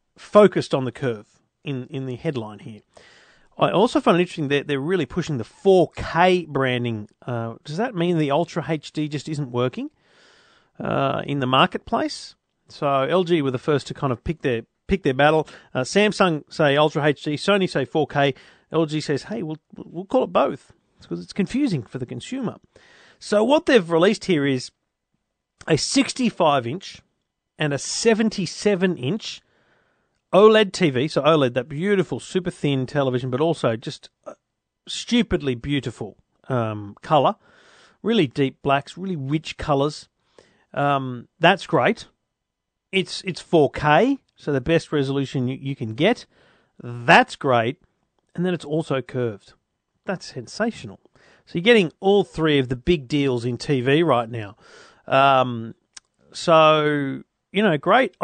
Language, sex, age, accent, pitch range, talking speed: English, male, 40-59, Australian, 130-180 Hz, 155 wpm